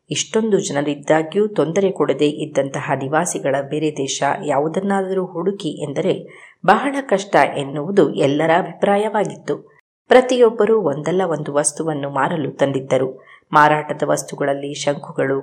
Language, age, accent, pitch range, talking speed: Kannada, 20-39, native, 145-195 Hz, 95 wpm